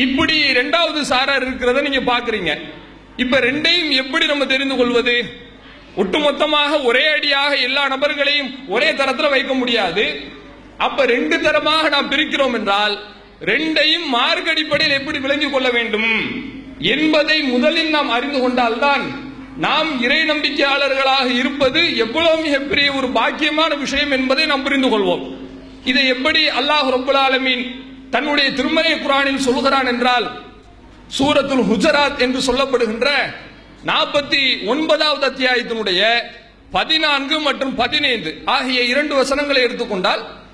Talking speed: 110 wpm